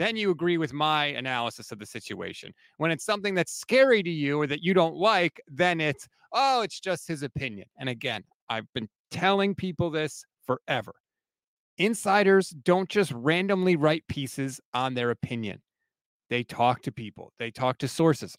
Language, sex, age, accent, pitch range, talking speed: English, male, 30-49, American, 140-185 Hz, 175 wpm